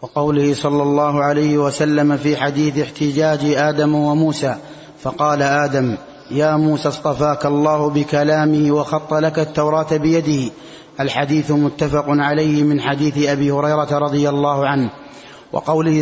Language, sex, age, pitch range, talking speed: Arabic, male, 30-49, 150-160 Hz, 120 wpm